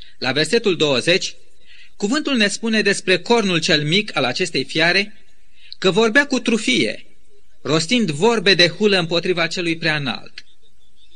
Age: 30-49